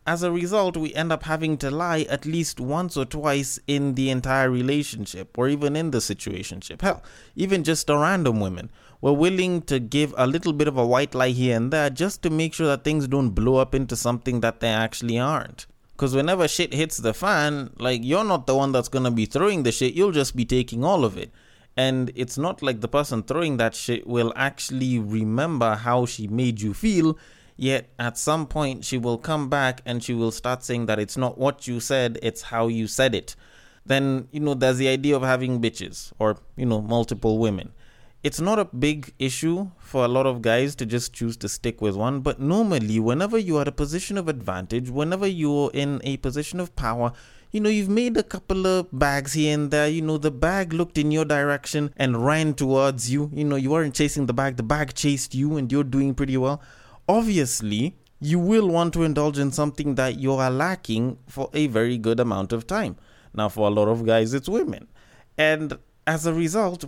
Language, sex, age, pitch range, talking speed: English, male, 20-39, 120-155 Hz, 215 wpm